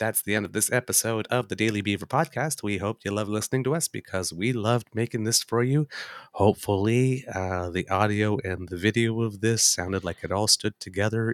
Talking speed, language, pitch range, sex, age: 210 wpm, English, 95-125 Hz, male, 30-49